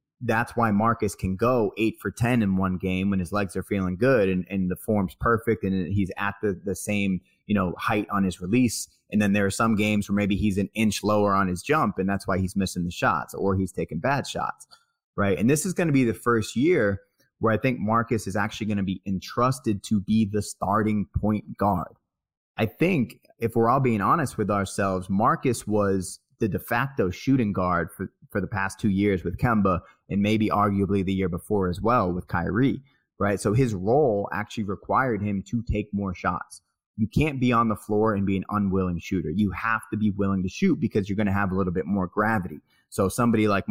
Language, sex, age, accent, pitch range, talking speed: English, male, 30-49, American, 95-115 Hz, 225 wpm